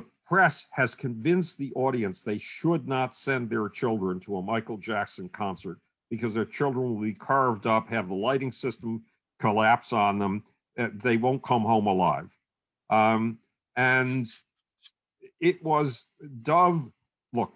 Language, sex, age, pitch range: English, male, 50-69, 110-140 Hz